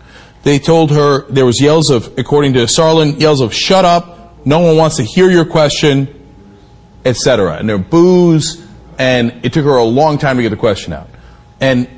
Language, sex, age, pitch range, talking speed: English, male, 40-59, 140-230 Hz, 195 wpm